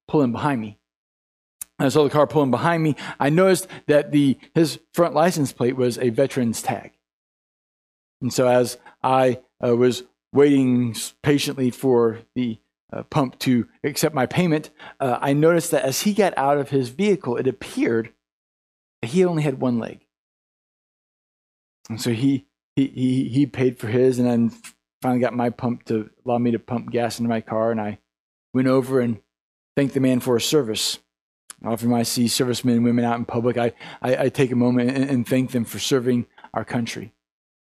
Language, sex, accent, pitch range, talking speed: English, male, American, 105-130 Hz, 185 wpm